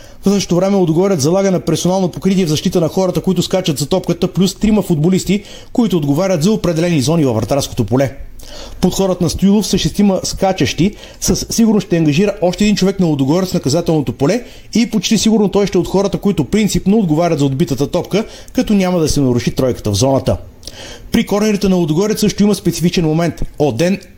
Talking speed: 185 wpm